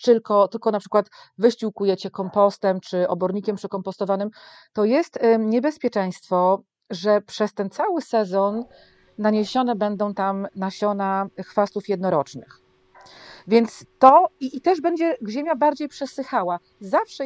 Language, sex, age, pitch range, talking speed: Polish, female, 40-59, 190-240 Hz, 115 wpm